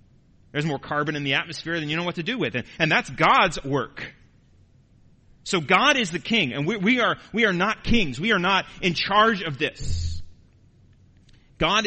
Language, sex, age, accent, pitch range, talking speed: English, male, 30-49, American, 130-180 Hz, 195 wpm